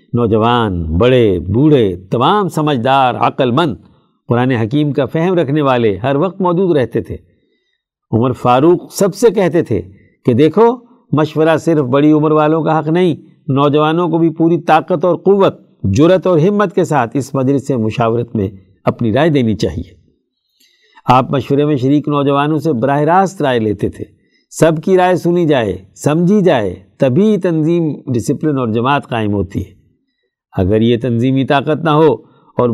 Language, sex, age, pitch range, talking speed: Urdu, male, 50-69, 120-165 Hz, 160 wpm